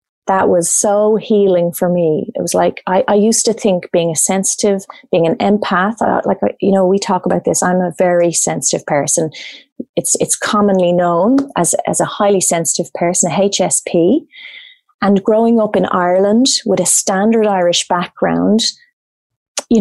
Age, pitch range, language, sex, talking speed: 30-49, 180-220 Hz, English, female, 165 wpm